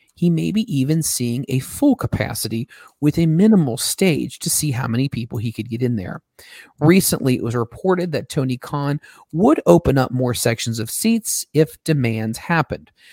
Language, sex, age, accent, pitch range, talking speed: English, male, 40-59, American, 115-155 Hz, 180 wpm